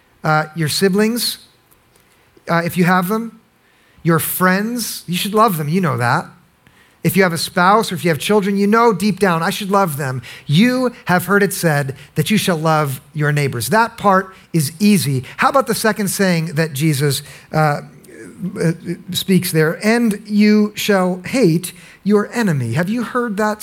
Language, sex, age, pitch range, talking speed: English, male, 50-69, 150-210 Hz, 180 wpm